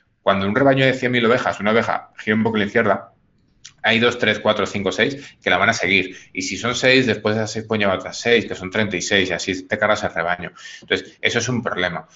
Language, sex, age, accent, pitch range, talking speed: Spanish, male, 30-49, Spanish, 95-120 Hz, 240 wpm